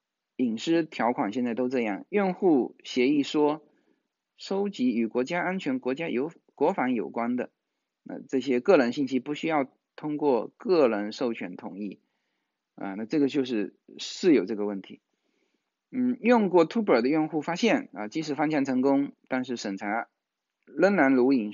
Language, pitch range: Chinese, 125-200 Hz